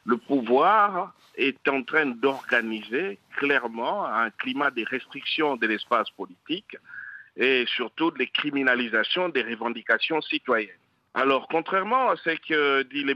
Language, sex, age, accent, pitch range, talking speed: French, male, 50-69, French, 135-215 Hz, 130 wpm